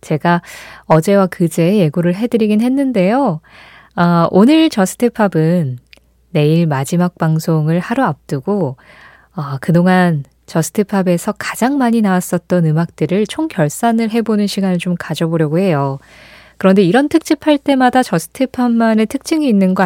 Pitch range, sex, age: 160-230 Hz, female, 20-39